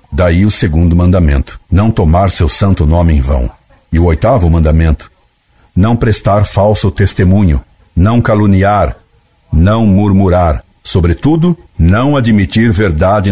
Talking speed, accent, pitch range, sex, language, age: 120 wpm, Brazilian, 85-110 Hz, male, Portuguese, 60-79